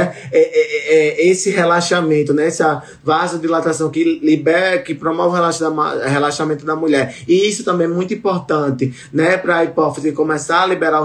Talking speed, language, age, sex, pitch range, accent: 140 wpm, Portuguese, 20-39, male, 145-170 Hz, Brazilian